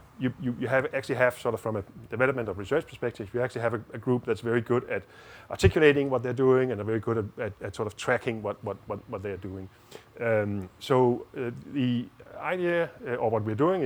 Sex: male